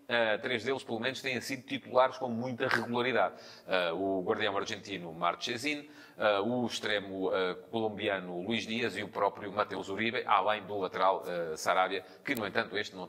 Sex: male